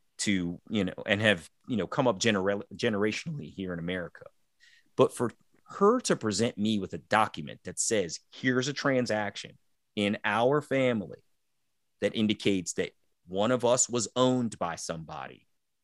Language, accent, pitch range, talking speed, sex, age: English, American, 95-115 Hz, 155 wpm, male, 30-49